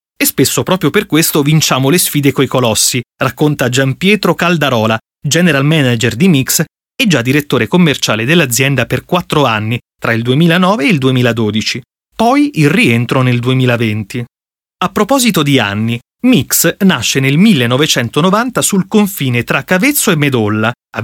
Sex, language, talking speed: male, Italian, 145 wpm